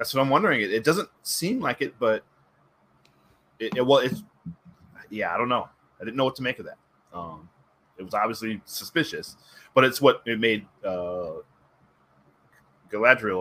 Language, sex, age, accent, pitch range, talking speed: English, male, 30-49, American, 80-115 Hz, 175 wpm